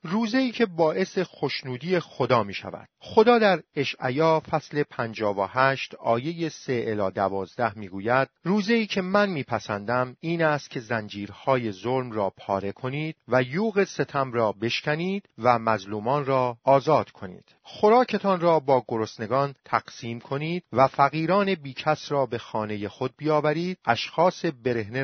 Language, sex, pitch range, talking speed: Persian, male, 120-165 Hz, 140 wpm